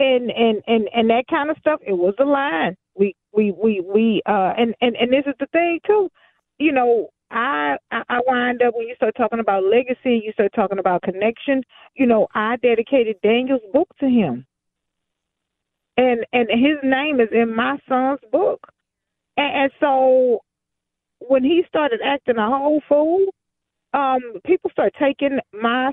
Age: 40-59